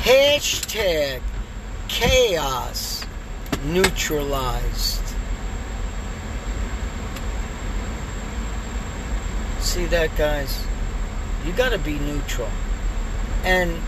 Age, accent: 50-69, American